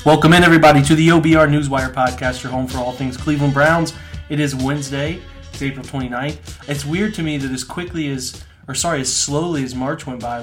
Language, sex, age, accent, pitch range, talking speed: English, male, 30-49, American, 125-155 Hz, 215 wpm